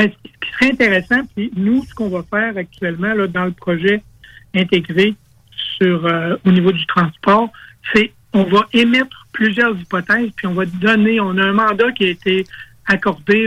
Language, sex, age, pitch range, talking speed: French, male, 60-79, 180-220 Hz, 170 wpm